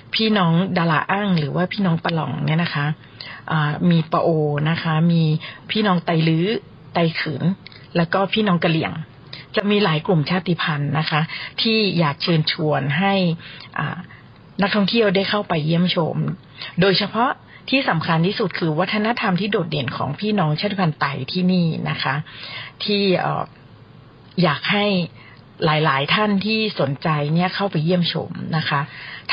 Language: Thai